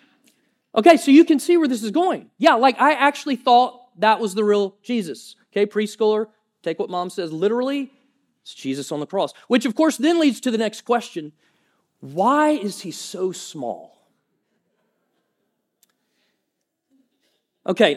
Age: 40-59